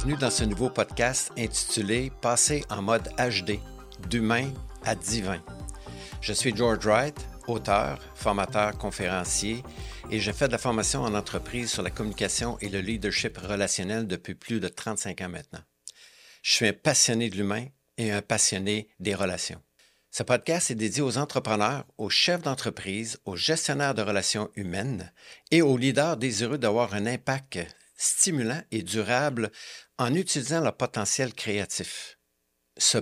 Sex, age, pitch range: male, 50-69, 100-125 Hz